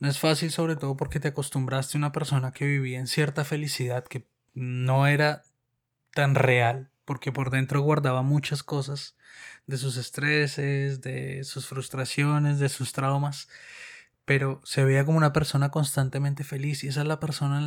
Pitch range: 130-155 Hz